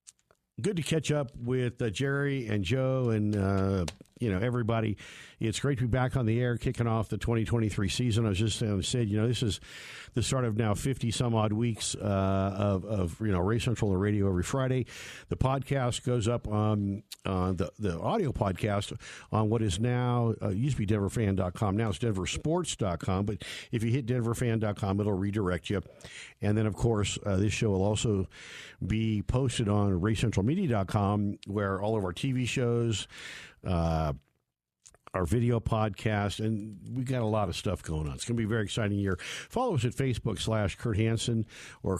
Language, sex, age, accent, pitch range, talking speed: English, male, 50-69, American, 100-125 Hz, 190 wpm